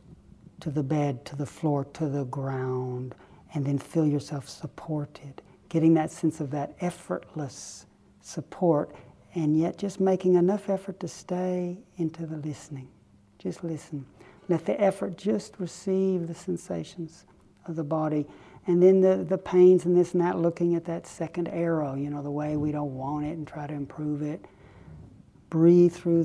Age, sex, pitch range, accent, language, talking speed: 60-79, male, 150-175 Hz, American, English, 165 wpm